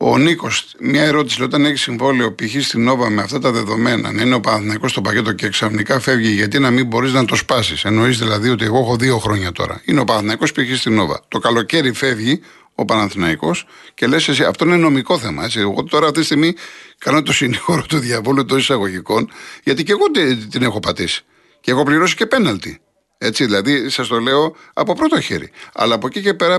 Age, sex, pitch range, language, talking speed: 50-69, male, 115-155 Hz, Greek, 215 wpm